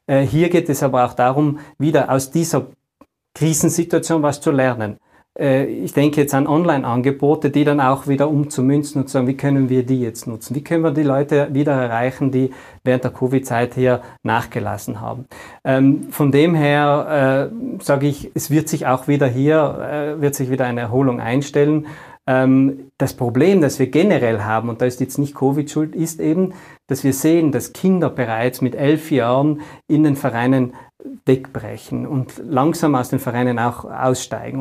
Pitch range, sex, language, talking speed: 125-150 Hz, male, German, 170 wpm